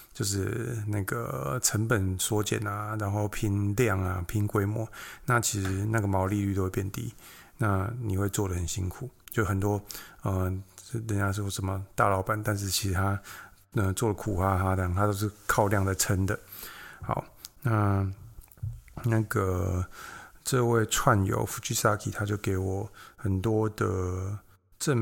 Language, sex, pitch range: Chinese, male, 95-115 Hz